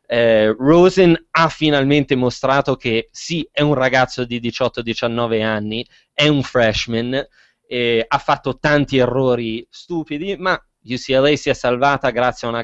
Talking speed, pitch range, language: 145 wpm, 115-135 Hz, Italian